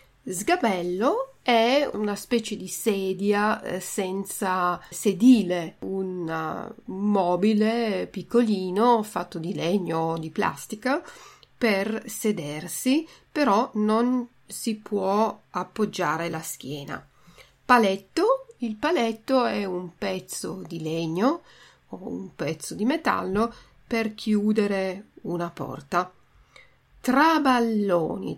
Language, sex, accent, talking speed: Italian, female, native, 95 wpm